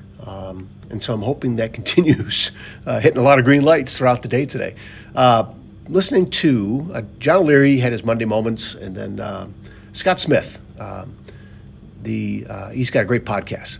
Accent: American